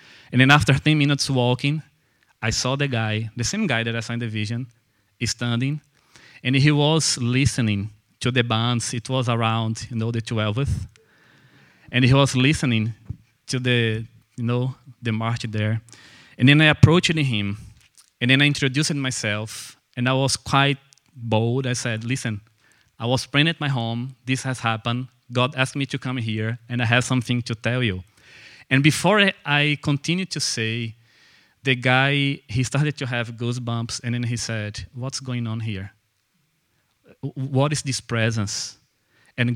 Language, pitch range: English, 115-135 Hz